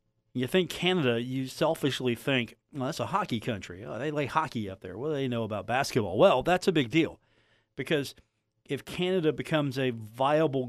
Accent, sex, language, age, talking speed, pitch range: American, male, English, 40-59, 185 wpm, 115-150 Hz